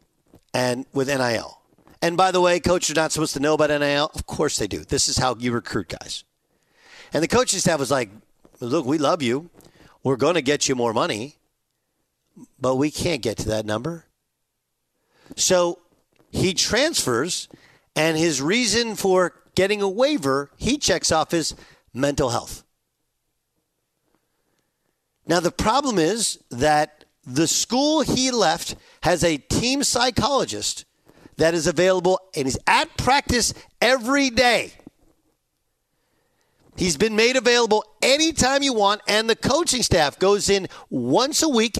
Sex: male